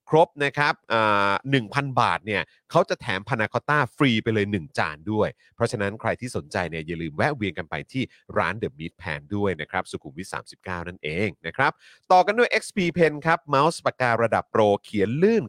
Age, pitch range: 30-49, 105-160 Hz